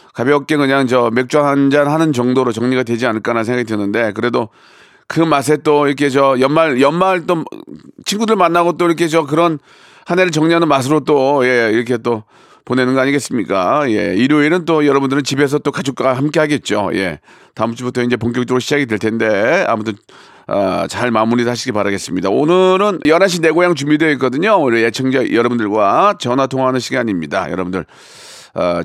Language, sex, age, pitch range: Korean, male, 40-59, 120-175 Hz